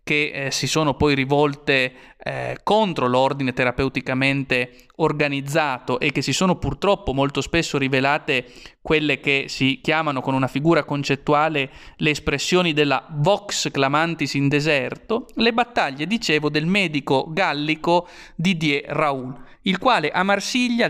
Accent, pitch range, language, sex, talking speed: native, 140-180 Hz, Italian, male, 130 wpm